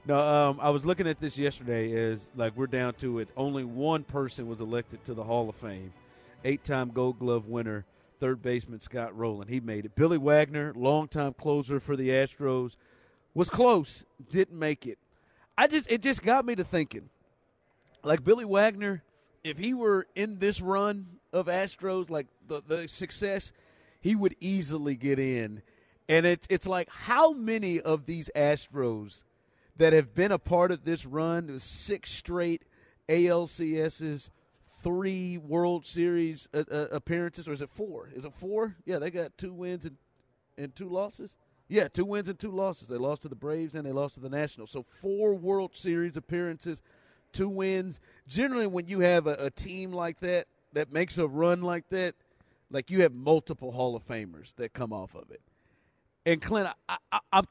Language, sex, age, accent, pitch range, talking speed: English, male, 40-59, American, 130-180 Hz, 180 wpm